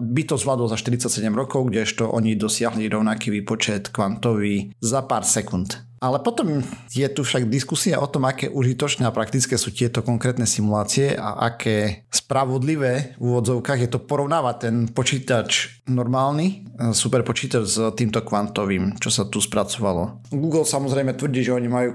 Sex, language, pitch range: male, Slovak, 110-130 Hz